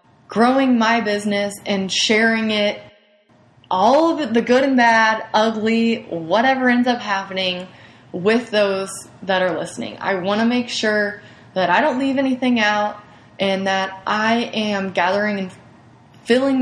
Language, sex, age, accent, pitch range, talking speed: English, female, 20-39, American, 190-230 Hz, 145 wpm